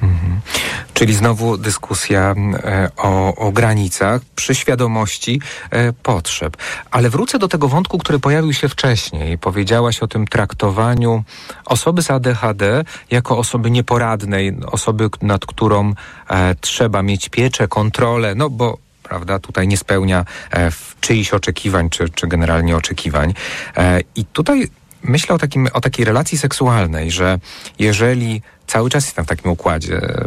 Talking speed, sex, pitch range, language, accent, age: 140 wpm, male, 90-115 Hz, Polish, native, 40-59